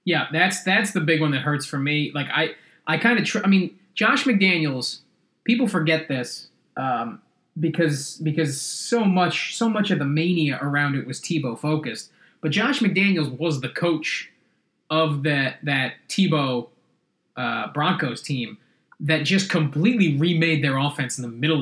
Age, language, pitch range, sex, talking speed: 20-39, English, 140-175 Hz, male, 165 wpm